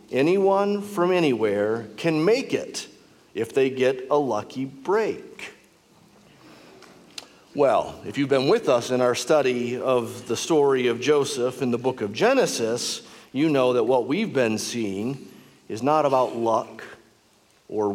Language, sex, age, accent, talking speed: English, male, 50-69, American, 145 wpm